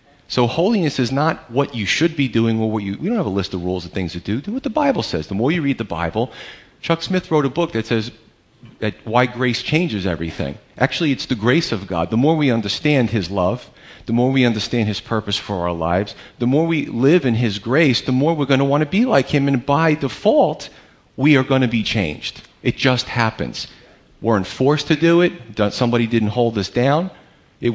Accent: American